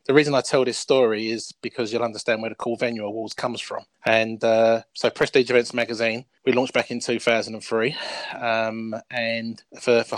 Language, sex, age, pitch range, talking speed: English, male, 20-39, 115-135 Hz, 190 wpm